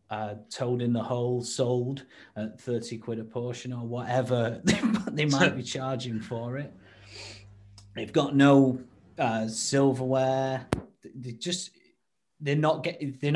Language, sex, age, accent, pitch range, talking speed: English, male, 20-39, British, 115-135 Hz, 135 wpm